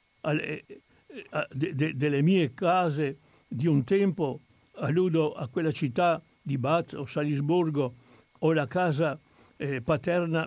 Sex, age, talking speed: male, 60-79, 110 wpm